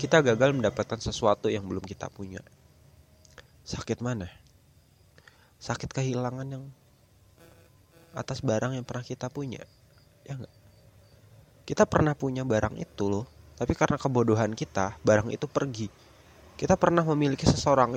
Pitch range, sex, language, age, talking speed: 110-145 Hz, male, Indonesian, 20-39, 125 wpm